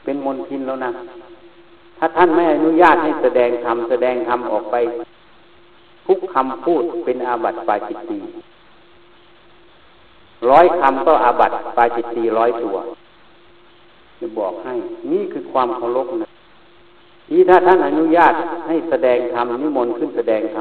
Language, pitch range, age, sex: Thai, 125-180 Hz, 60-79, male